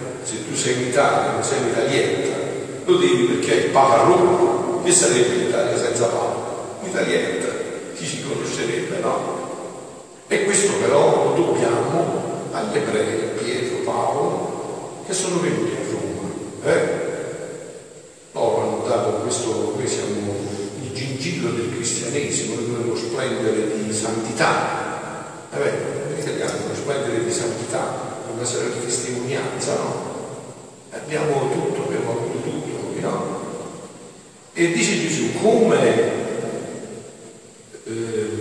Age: 50-69